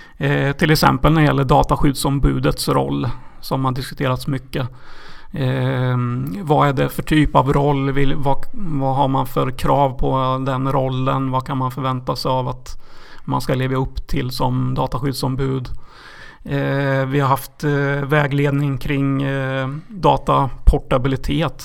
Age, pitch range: 30-49, 130-145 Hz